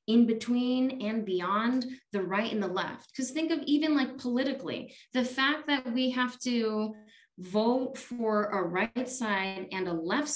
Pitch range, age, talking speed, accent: 205-250 Hz, 20-39, 170 wpm, American